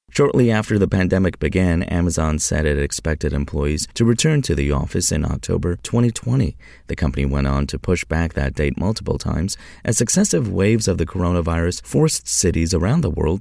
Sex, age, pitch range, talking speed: male, 30-49, 80-110 Hz, 180 wpm